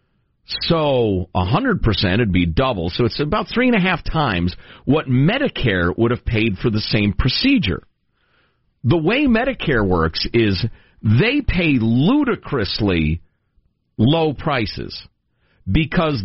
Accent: American